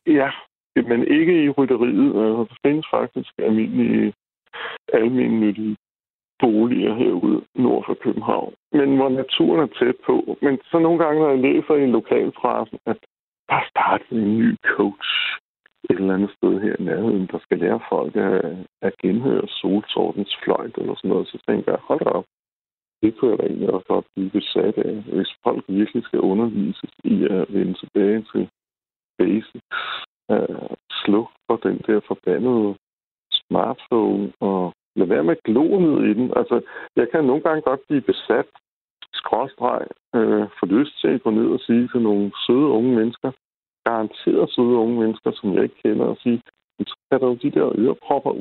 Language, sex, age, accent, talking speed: Danish, male, 60-79, native, 170 wpm